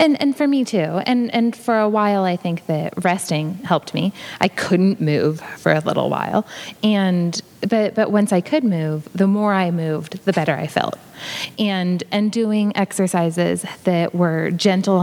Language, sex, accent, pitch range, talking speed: English, female, American, 170-220 Hz, 180 wpm